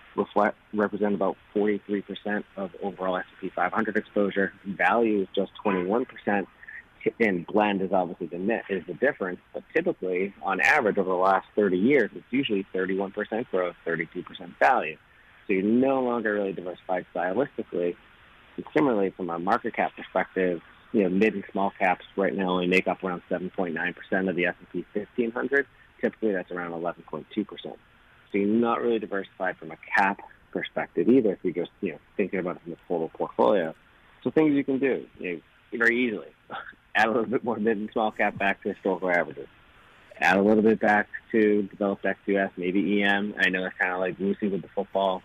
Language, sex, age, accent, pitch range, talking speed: English, male, 30-49, American, 95-110 Hz, 205 wpm